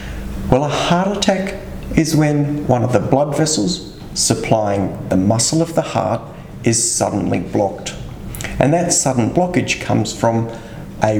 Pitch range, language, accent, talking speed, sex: 110-155 Hz, English, Australian, 145 wpm, male